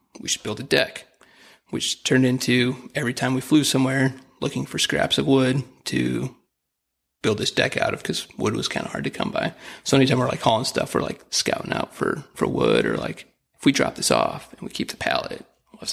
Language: English